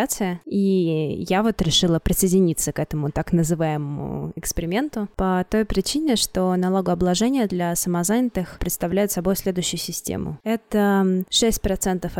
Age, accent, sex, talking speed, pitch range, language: 20-39, native, female, 115 wpm, 180-215 Hz, Russian